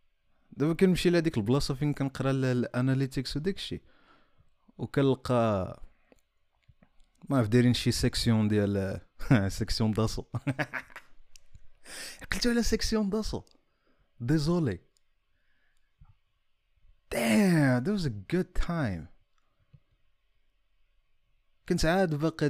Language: Arabic